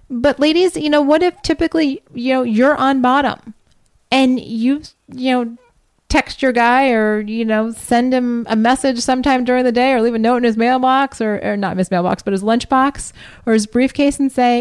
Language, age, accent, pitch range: English, 30-49, American, 215-275 Hz